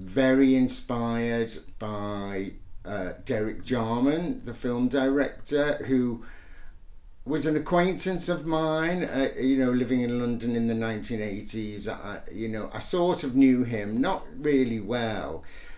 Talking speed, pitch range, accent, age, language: 130 wpm, 110-140 Hz, British, 60-79, English